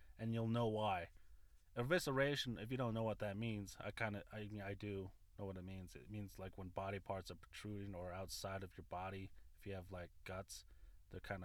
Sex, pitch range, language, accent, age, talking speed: male, 90-120 Hz, English, American, 30-49, 225 wpm